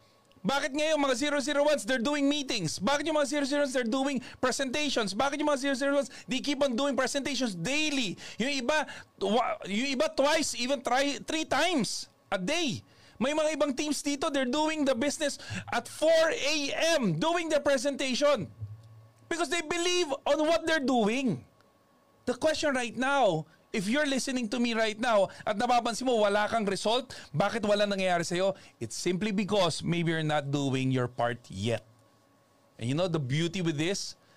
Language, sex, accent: Filipino, male, native